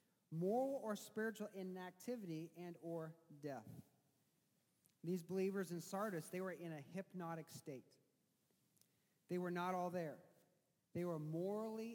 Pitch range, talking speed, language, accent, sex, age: 155-185 Hz, 125 wpm, English, American, male, 40-59